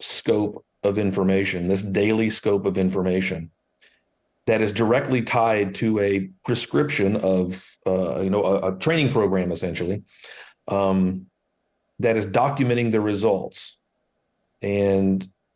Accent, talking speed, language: American, 120 wpm, English